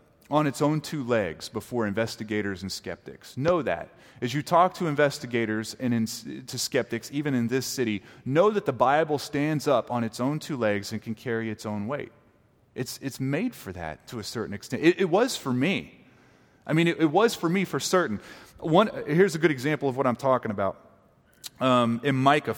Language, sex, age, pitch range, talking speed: English, male, 30-49, 120-180 Hz, 205 wpm